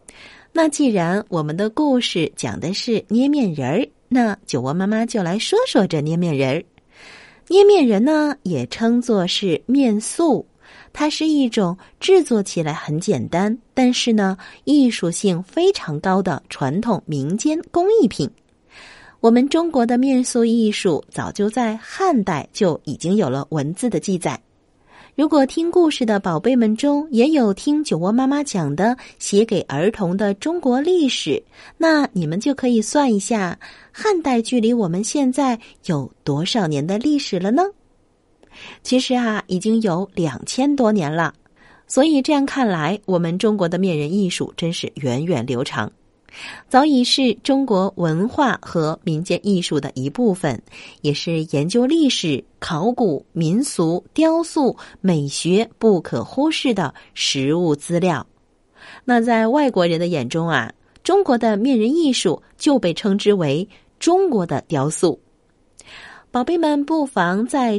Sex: female